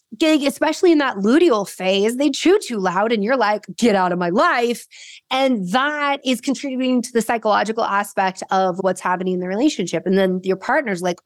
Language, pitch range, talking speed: English, 190-245 Hz, 190 wpm